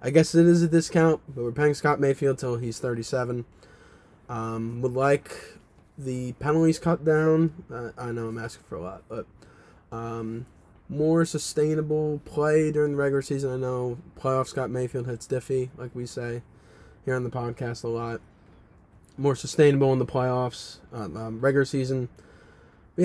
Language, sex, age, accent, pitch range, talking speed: English, male, 20-39, American, 115-140 Hz, 165 wpm